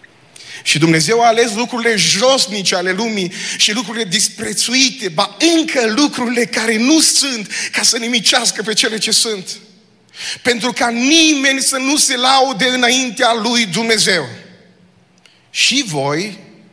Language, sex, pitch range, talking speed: Romanian, male, 150-220 Hz, 130 wpm